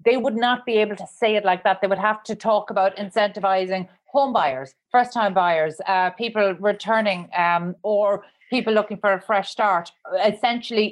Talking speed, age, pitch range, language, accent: 190 wpm, 30-49, 190-235 Hz, English, Irish